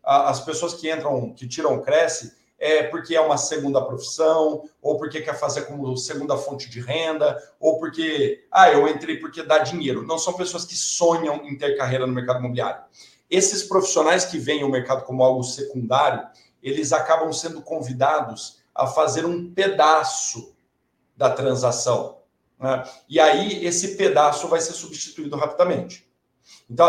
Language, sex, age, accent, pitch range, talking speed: Portuguese, male, 50-69, Brazilian, 145-175 Hz, 160 wpm